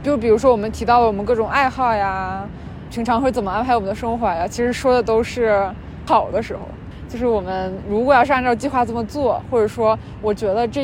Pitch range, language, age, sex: 200-240 Hz, Chinese, 20-39, female